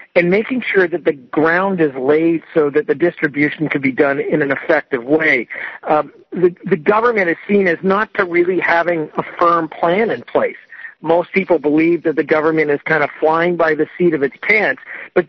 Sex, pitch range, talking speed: male, 150-185 Hz, 205 wpm